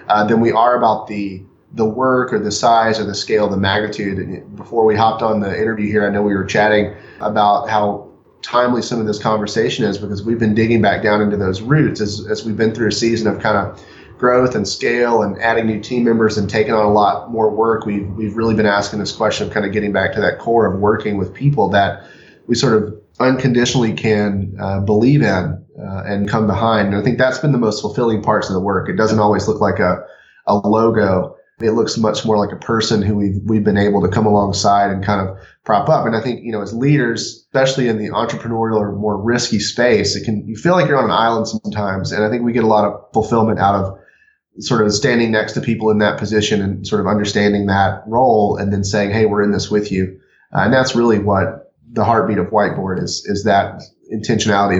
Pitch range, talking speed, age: 100-115 Hz, 240 wpm, 30-49